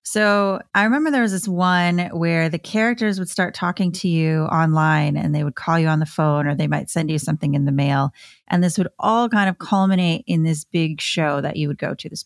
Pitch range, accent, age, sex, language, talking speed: 155-195 Hz, American, 30-49, female, English, 245 wpm